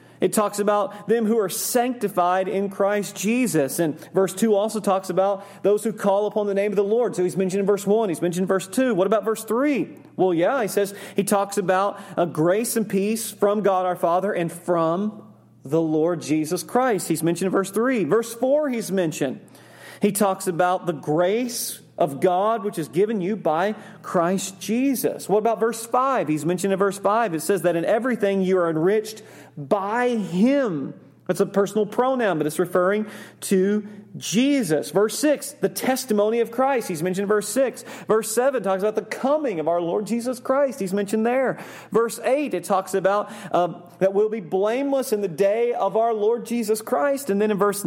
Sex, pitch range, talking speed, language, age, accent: male, 180-220 Hz, 200 wpm, English, 40-59, American